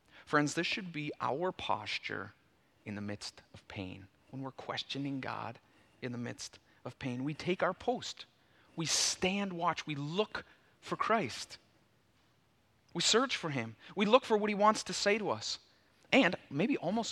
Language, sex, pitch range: English, male, 125-175 Hz